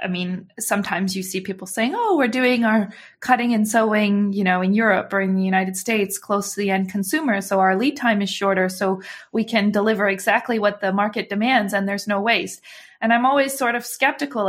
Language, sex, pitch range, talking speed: English, female, 195-240 Hz, 220 wpm